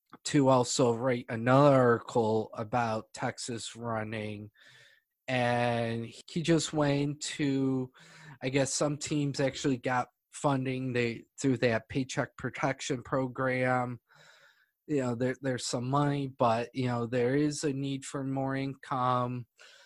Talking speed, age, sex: 125 wpm, 20-39, male